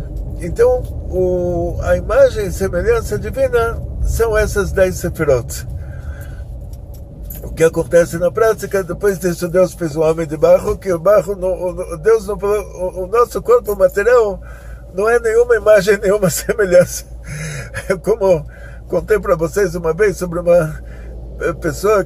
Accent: Brazilian